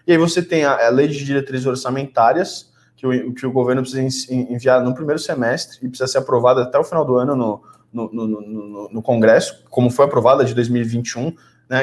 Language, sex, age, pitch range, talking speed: Portuguese, male, 20-39, 125-155 Hz, 200 wpm